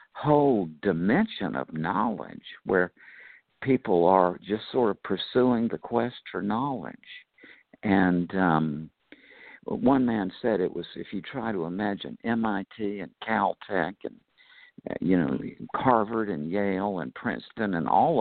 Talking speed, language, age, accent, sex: 130 wpm, English, 60-79, American, male